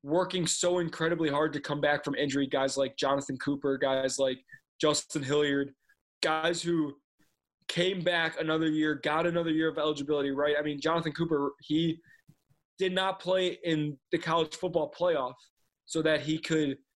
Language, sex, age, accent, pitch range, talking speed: English, male, 20-39, American, 140-165 Hz, 160 wpm